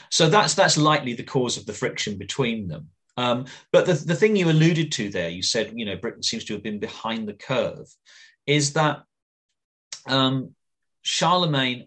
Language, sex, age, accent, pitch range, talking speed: English, male, 40-59, British, 100-140 Hz, 180 wpm